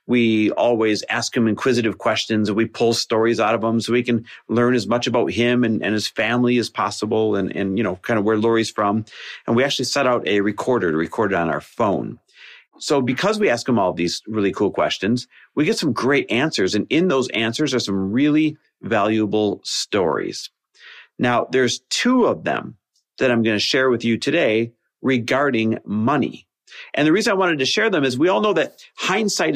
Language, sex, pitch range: English, male, 110-165 Hz